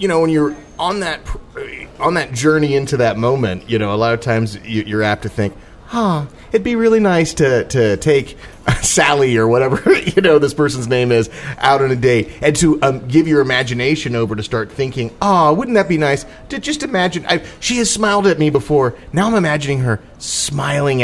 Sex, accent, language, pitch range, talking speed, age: male, American, English, 110-155 Hz, 215 wpm, 30-49